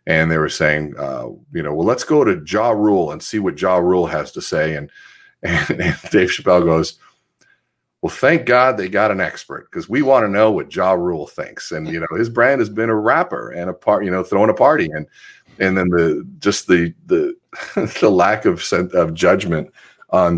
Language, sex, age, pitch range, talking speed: English, male, 40-59, 85-115 Hz, 220 wpm